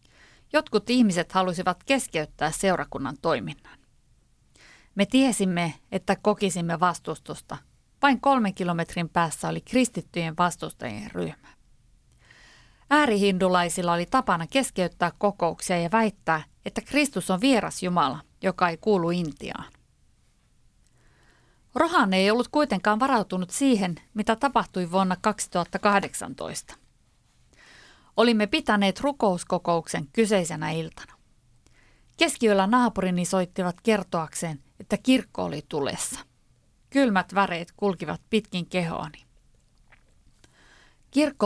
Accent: native